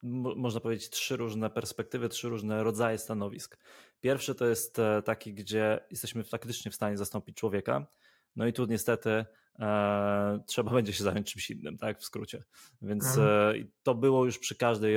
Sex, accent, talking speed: male, native, 155 wpm